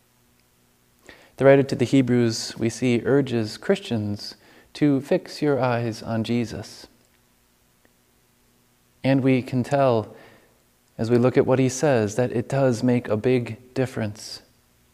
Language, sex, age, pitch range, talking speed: English, male, 30-49, 120-145 Hz, 135 wpm